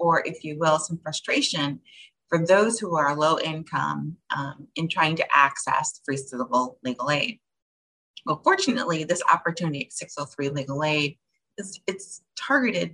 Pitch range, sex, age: 140-175 Hz, female, 30-49